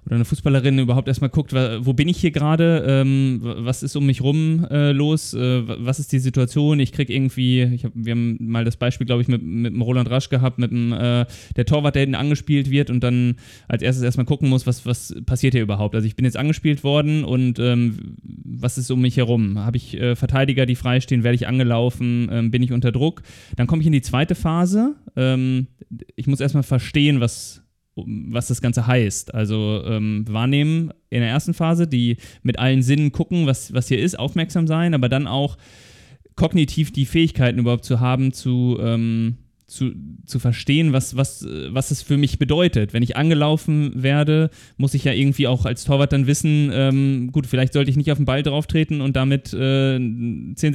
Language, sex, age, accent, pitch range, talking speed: German, male, 20-39, German, 120-145 Hz, 205 wpm